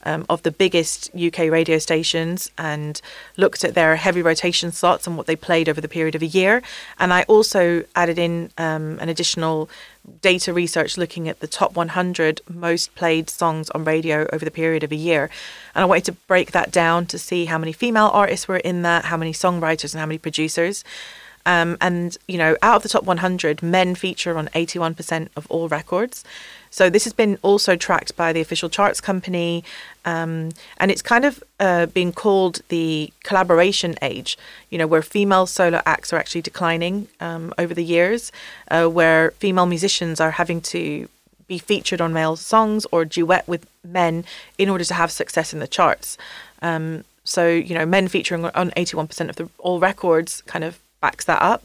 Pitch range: 160-185 Hz